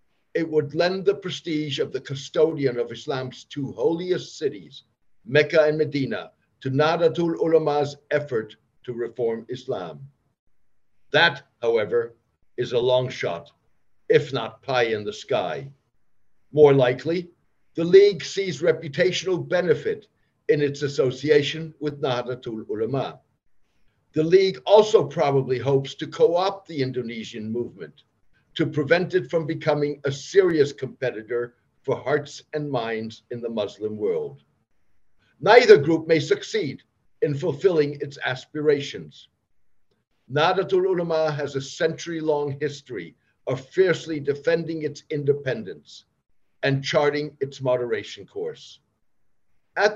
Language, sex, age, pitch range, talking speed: English, male, 60-79, 135-175 Hz, 120 wpm